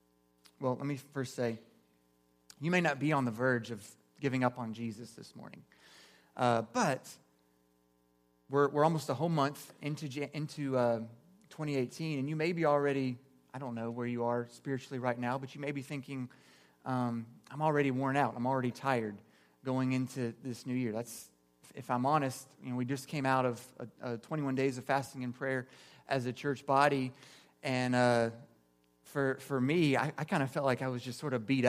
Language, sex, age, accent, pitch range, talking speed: English, male, 30-49, American, 115-140 Hz, 195 wpm